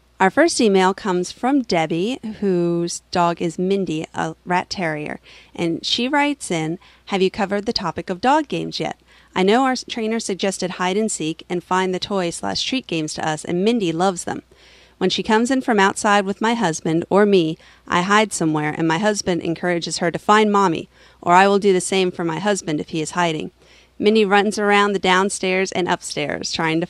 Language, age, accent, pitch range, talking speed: English, 40-59, American, 165-205 Hz, 205 wpm